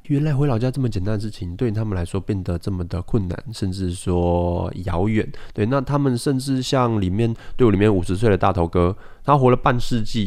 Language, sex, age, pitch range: Chinese, male, 20-39, 95-130 Hz